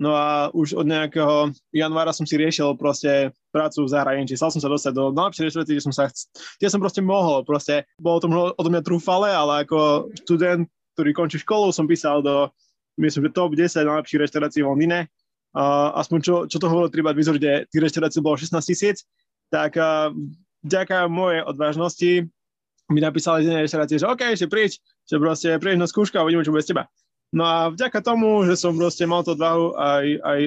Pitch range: 145-175 Hz